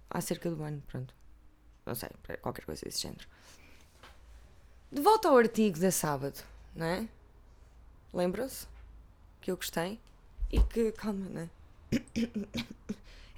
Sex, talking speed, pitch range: female, 120 wpm, 150-195 Hz